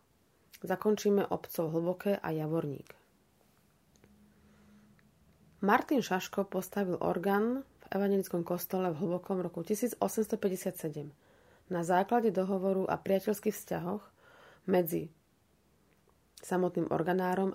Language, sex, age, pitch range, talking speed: Slovak, female, 30-49, 165-200 Hz, 85 wpm